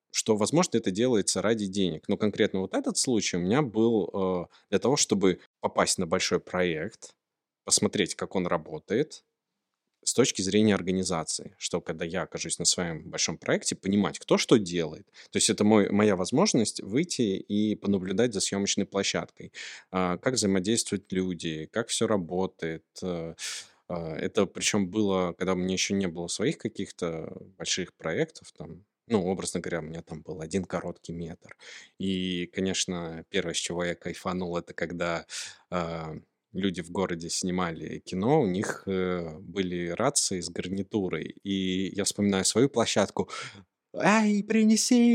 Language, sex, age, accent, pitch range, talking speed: Russian, male, 20-39, native, 90-105 Hz, 150 wpm